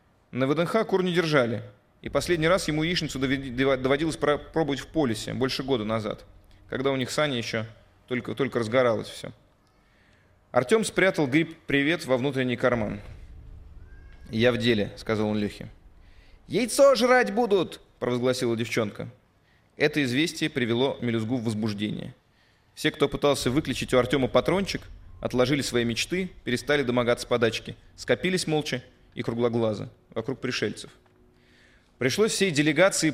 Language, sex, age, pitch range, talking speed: Russian, male, 20-39, 110-145 Hz, 130 wpm